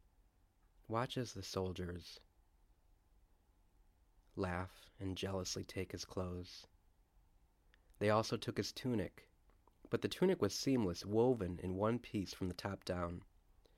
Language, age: English, 30-49